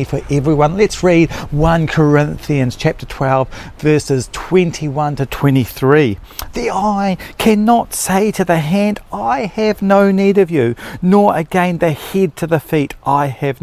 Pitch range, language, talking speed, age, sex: 130-170 Hz, English, 150 wpm, 40-59, male